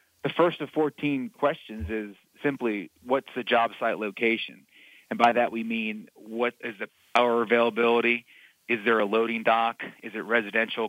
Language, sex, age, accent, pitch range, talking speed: English, male, 40-59, American, 110-125 Hz, 165 wpm